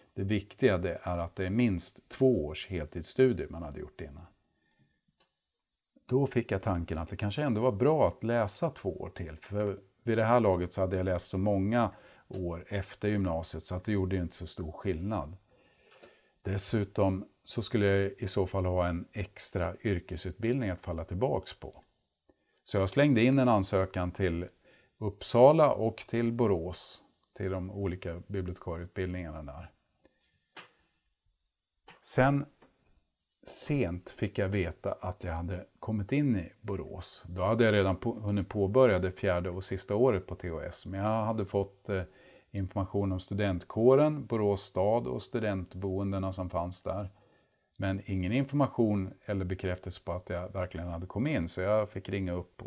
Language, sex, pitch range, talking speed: Swedish, male, 90-110 Hz, 160 wpm